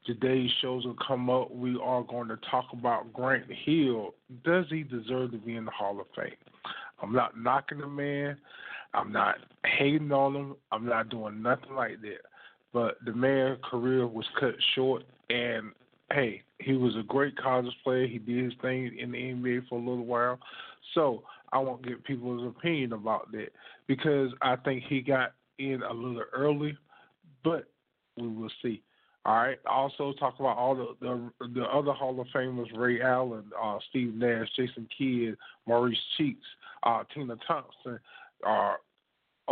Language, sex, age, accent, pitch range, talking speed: English, male, 20-39, American, 120-140 Hz, 170 wpm